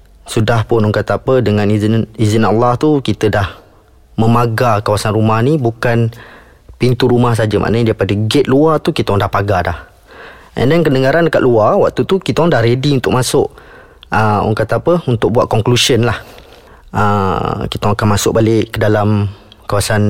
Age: 20-39